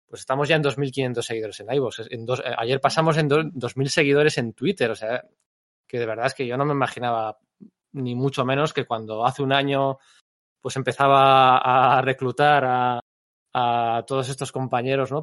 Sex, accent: male, Spanish